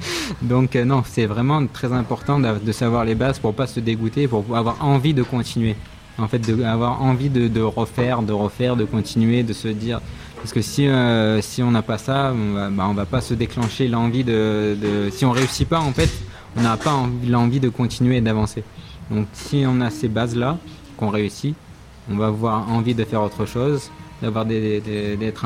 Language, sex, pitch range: French, male, 105-125 Hz